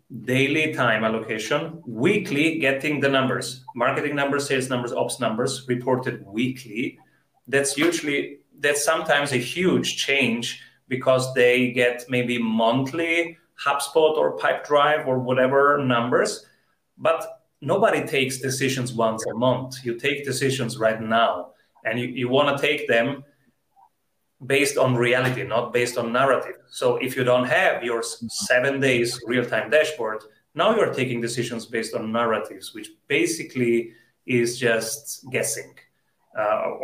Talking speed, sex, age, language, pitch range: 135 wpm, male, 30-49, English, 120-145 Hz